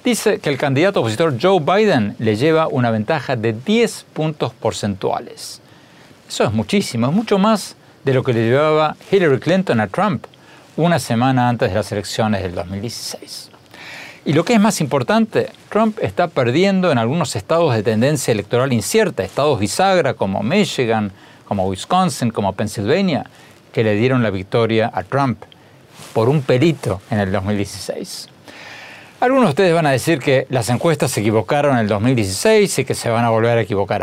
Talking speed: 170 wpm